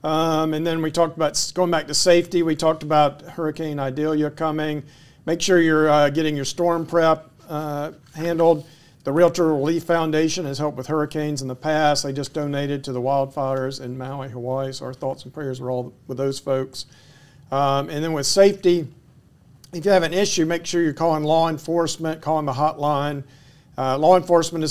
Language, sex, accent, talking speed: English, male, American, 190 wpm